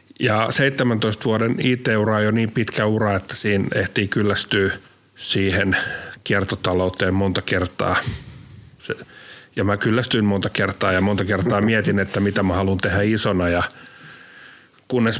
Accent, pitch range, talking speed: native, 95-115 Hz, 130 wpm